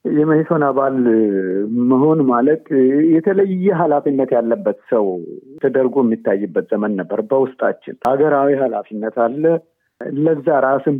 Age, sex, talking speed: 50-69, male, 100 wpm